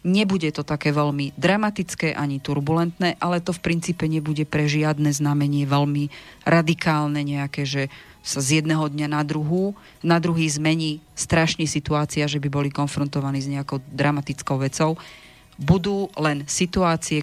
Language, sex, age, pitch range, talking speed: Slovak, female, 30-49, 145-165 Hz, 145 wpm